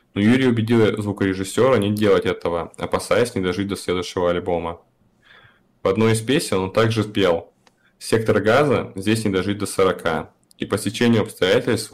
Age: 20-39